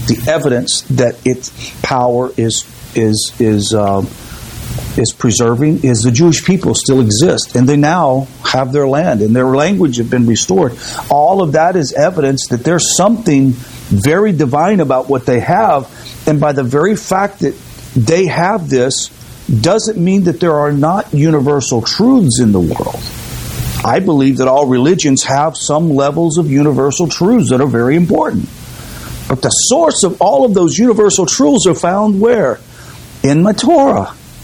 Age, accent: 50-69, American